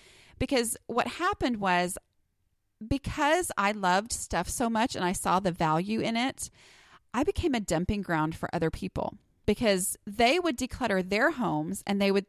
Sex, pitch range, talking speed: female, 180-265 Hz, 165 wpm